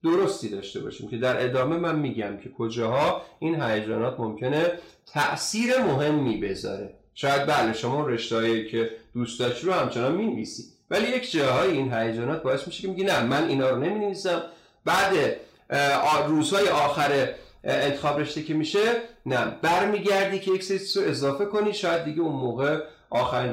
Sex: male